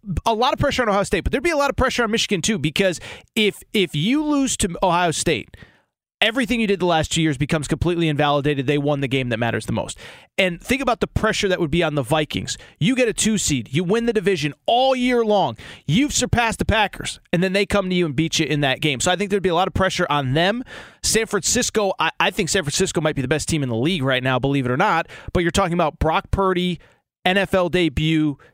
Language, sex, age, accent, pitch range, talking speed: English, male, 30-49, American, 150-200 Hz, 255 wpm